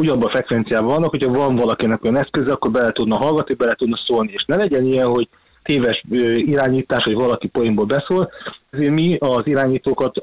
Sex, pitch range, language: male, 125-145 Hz, Hungarian